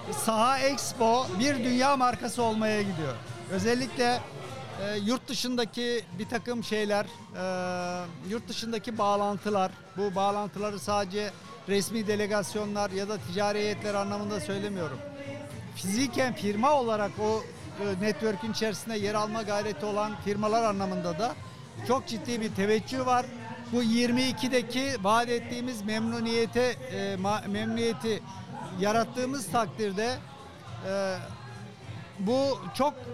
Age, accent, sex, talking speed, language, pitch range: 60-79, native, male, 110 wpm, Turkish, 205-240 Hz